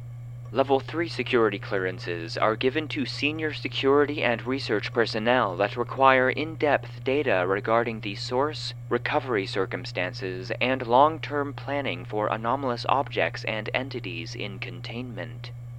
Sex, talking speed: male, 120 wpm